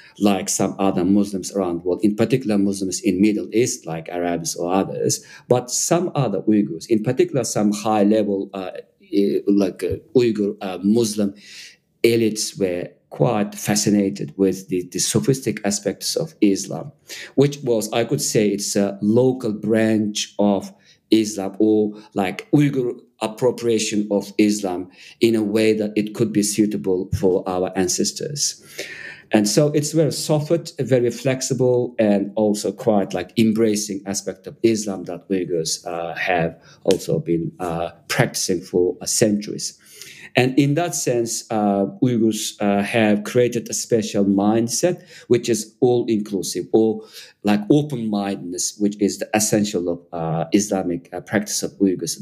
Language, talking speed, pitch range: English, 145 wpm, 100-115 Hz